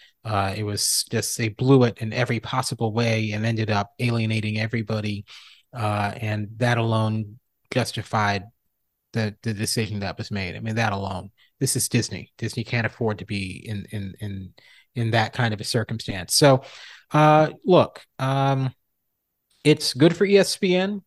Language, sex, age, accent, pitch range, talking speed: English, male, 30-49, American, 115-140 Hz, 160 wpm